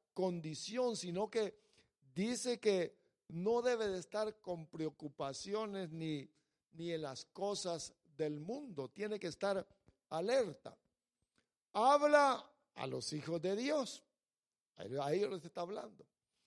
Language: English